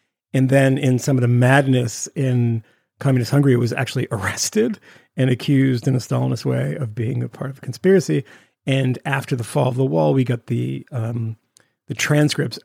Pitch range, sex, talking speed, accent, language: 125-150 Hz, male, 190 wpm, American, English